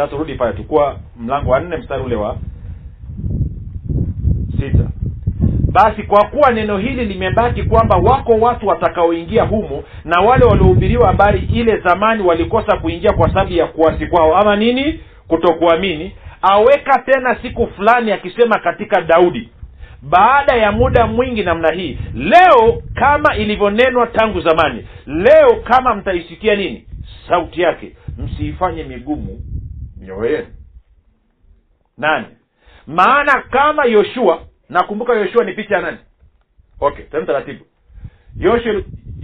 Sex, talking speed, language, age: male, 120 wpm, Swahili, 50-69